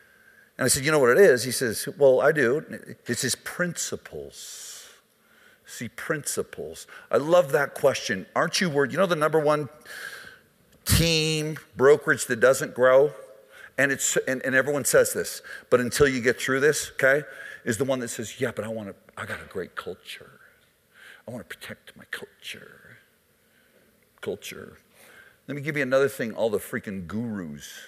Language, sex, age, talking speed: English, male, 50-69, 170 wpm